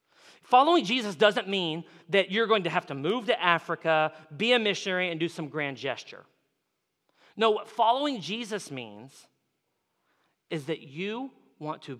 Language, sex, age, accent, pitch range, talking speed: English, male, 40-59, American, 160-225 Hz, 155 wpm